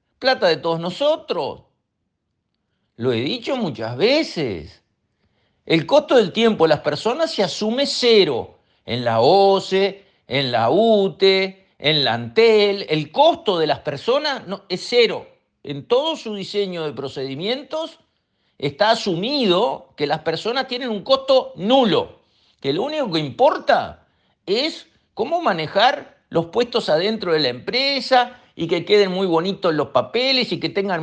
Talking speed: 145 wpm